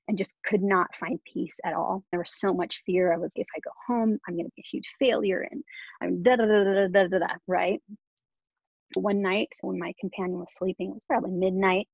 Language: English